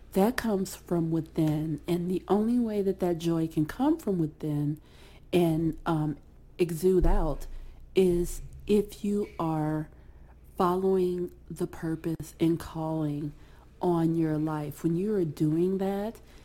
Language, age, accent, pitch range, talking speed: English, 40-59, American, 160-190 Hz, 130 wpm